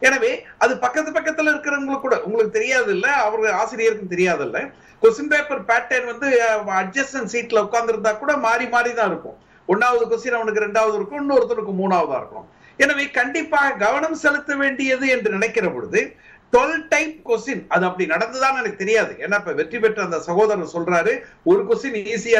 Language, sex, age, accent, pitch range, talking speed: Tamil, male, 50-69, native, 215-290 Hz, 120 wpm